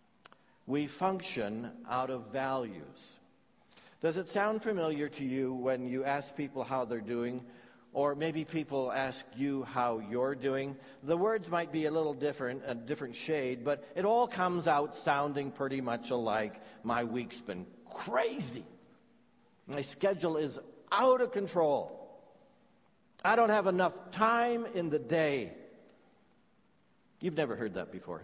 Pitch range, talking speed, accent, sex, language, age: 130-175 Hz, 145 wpm, American, male, English, 60-79